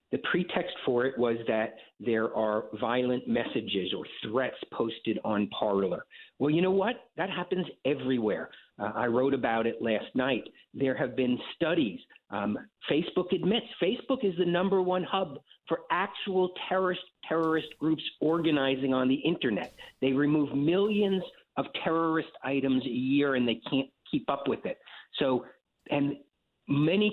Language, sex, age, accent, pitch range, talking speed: English, male, 50-69, American, 135-190 Hz, 155 wpm